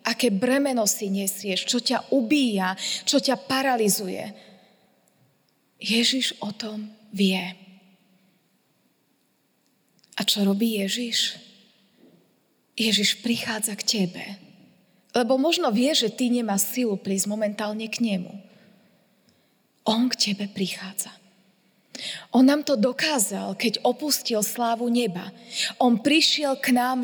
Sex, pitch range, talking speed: female, 200-265 Hz, 110 wpm